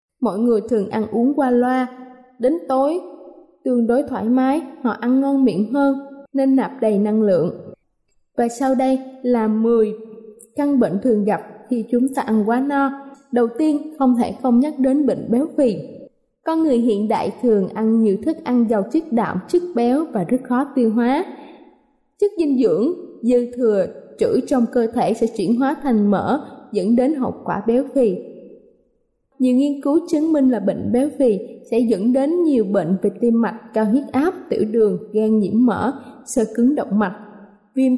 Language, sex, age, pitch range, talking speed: Vietnamese, female, 20-39, 220-275 Hz, 185 wpm